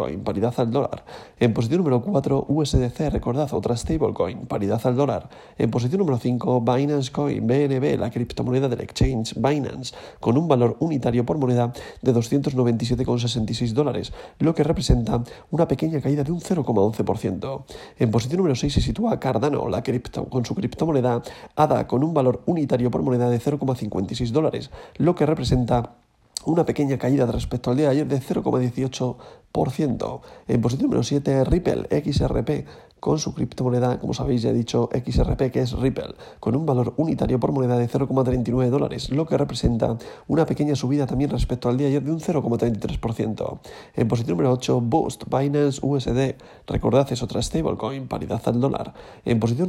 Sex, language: male, Spanish